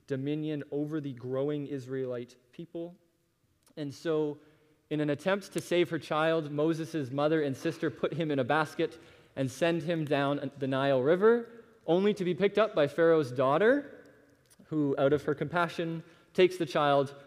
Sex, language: male, English